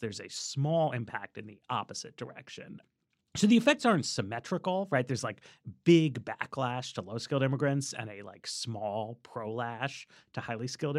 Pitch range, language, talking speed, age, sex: 115-155 Hz, English, 160 wpm, 30-49, male